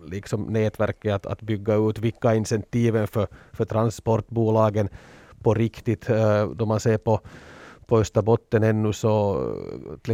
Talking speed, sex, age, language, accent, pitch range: 130 wpm, male, 30-49, Swedish, Finnish, 105-115 Hz